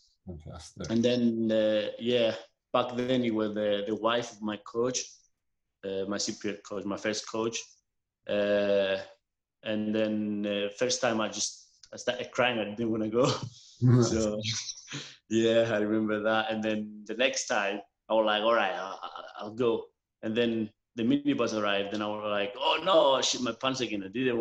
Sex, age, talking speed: male, 20-39, 175 wpm